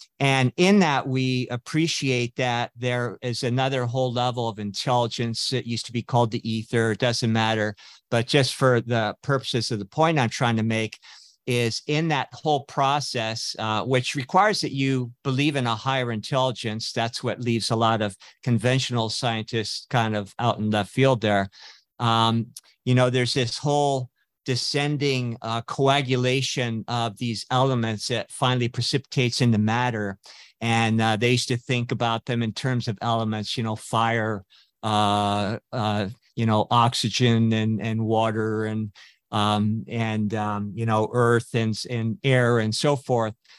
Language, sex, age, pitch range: English, male, 50-69, 110-130 Hz